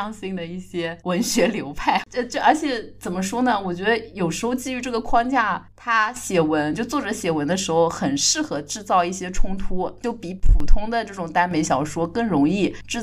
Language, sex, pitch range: Chinese, female, 160-220 Hz